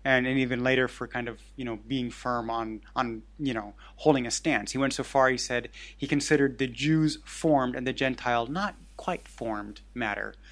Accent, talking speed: American, 205 wpm